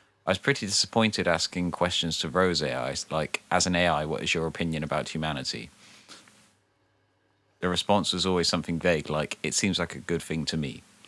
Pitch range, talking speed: 80-100 Hz, 185 wpm